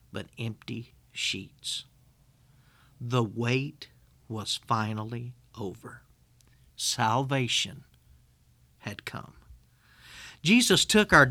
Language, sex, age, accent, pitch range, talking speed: English, male, 50-69, American, 110-140 Hz, 75 wpm